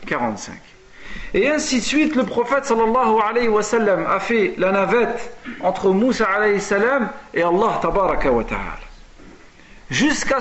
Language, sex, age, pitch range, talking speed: French, male, 50-69, 195-255 Hz, 145 wpm